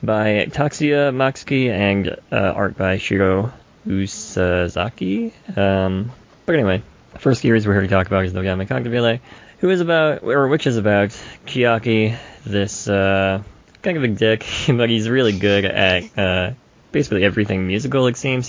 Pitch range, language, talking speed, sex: 95-120 Hz, English, 155 wpm, male